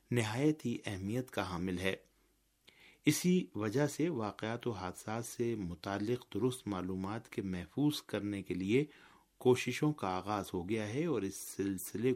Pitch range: 95-130 Hz